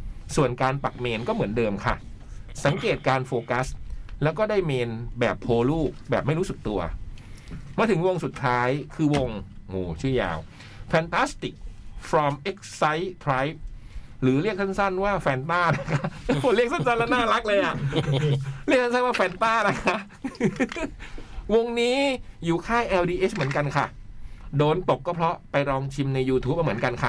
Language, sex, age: Thai, male, 60-79